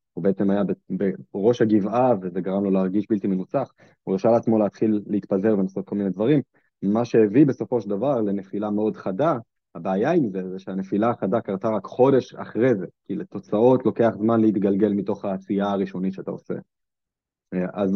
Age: 20-39